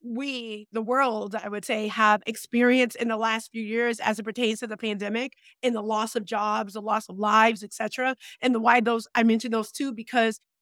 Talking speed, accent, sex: 220 wpm, American, female